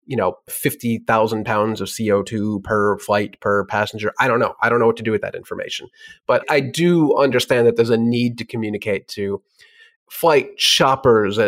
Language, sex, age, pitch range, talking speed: English, male, 30-49, 110-150 Hz, 185 wpm